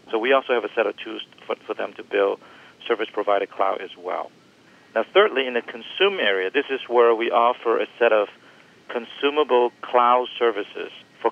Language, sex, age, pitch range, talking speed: English, male, 50-69, 105-125 Hz, 185 wpm